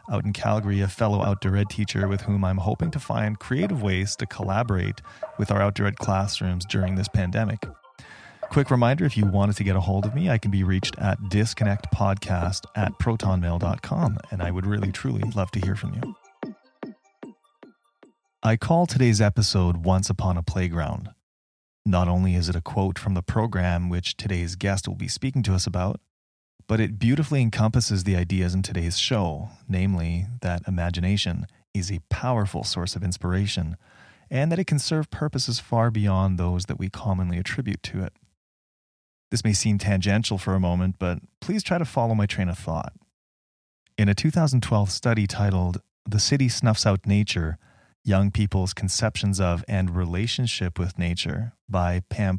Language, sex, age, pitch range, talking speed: English, male, 30-49, 90-110 Hz, 170 wpm